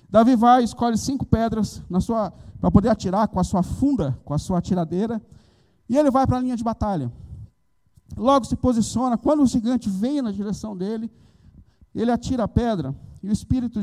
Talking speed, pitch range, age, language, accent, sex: 180 wpm, 155-220 Hz, 50-69, Portuguese, Brazilian, male